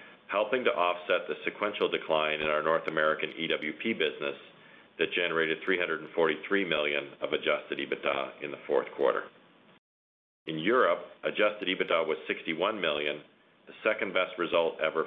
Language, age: English, 40-59